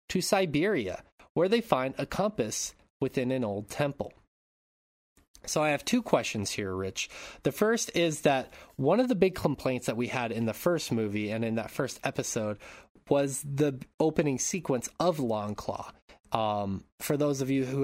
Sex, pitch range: male, 110-145 Hz